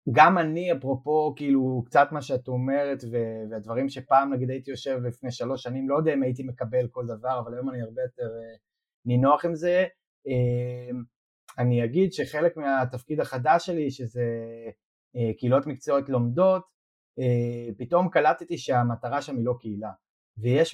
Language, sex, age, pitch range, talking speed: Hebrew, male, 30-49, 125-165 Hz, 155 wpm